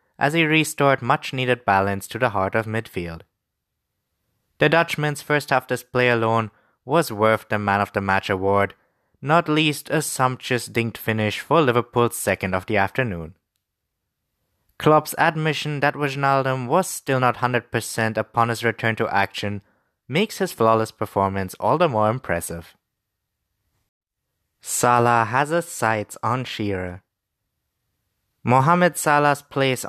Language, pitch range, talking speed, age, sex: English, 105-145 Hz, 125 wpm, 20-39, male